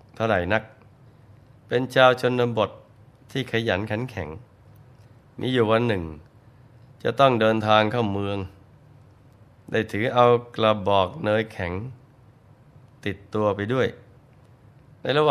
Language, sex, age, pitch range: Thai, male, 20-39, 105-130 Hz